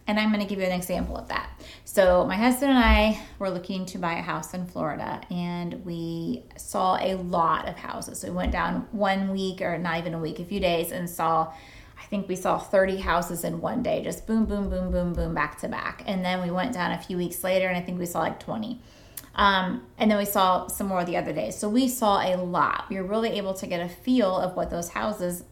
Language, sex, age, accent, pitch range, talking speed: English, female, 20-39, American, 175-210 Hz, 250 wpm